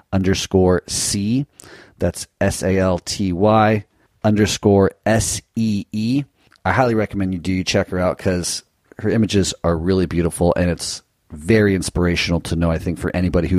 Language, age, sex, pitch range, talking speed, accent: English, 40-59, male, 85-100 Hz, 165 wpm, American